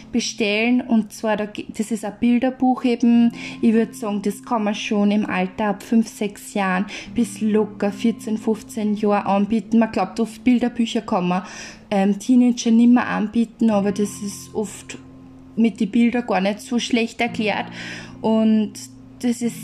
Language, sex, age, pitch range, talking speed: German, female, 20-39, 205-250 Hz, 160 wpm